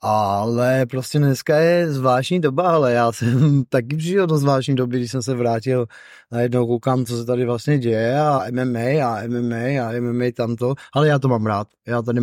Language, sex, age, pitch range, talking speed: Czech, male, 20-39, 115-130 Hz, 190 wpm